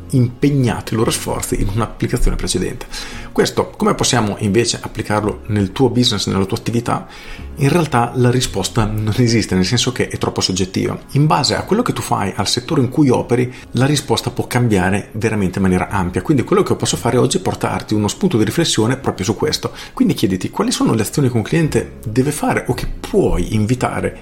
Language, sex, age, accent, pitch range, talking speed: Italian, male, 40-59, native, 95-120 Hz, 200 wpm